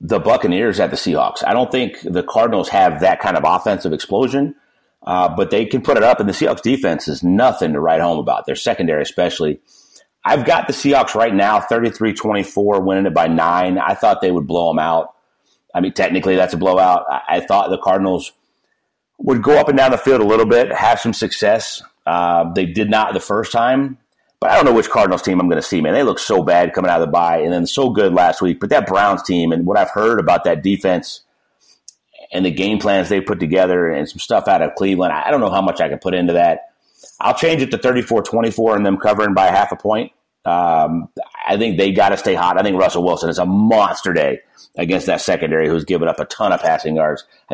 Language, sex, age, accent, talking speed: English, male, 40-59, American, 235 wpm